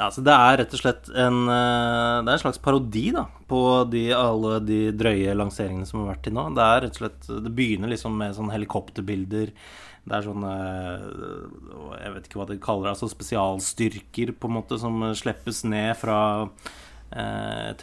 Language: English